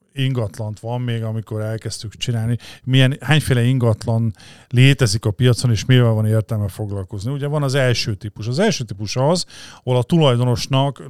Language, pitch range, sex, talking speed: Hungarian, 115-135 Hz, male, 155 wpm